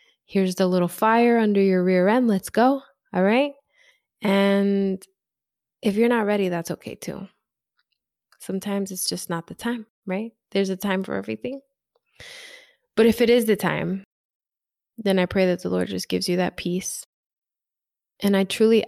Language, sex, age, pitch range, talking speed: English, female, 20-39, 175-200 Hz, 165 wpm